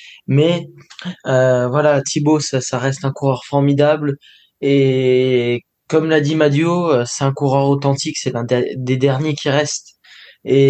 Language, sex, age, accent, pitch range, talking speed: French, male, 20-39, French, 130-150 Hz, 145 wpm